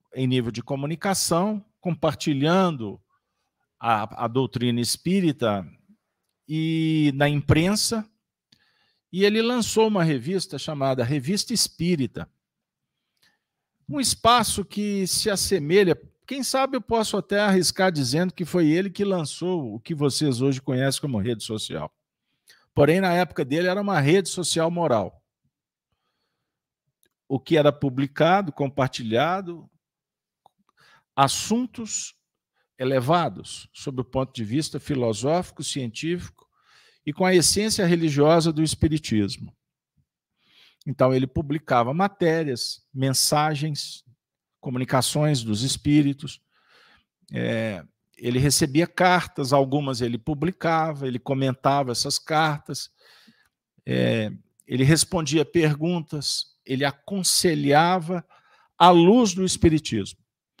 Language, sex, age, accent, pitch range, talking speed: Portuguese, male, 50-69, Brazilian, 135-180 Hz, 100 wpm